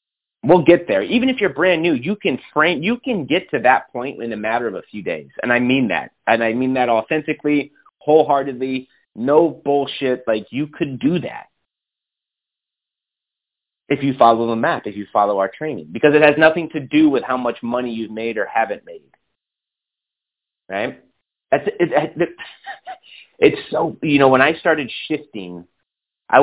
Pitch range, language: 115-150 Hz, English